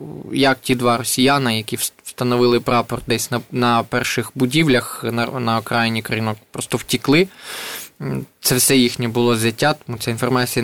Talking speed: 140 wpm